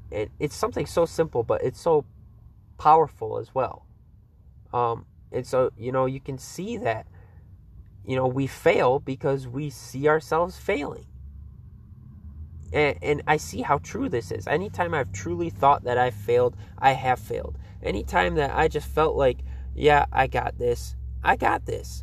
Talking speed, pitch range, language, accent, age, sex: 160 wpm, 95-145 Hz, English, American, 20-39, male